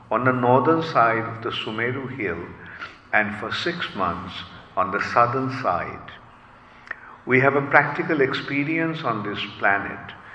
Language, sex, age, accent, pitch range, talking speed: English, male, 50-69, Indian, 105-140 Hz, 140 wpm